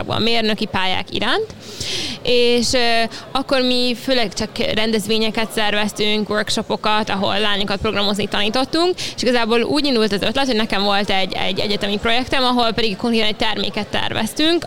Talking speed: 145 wpm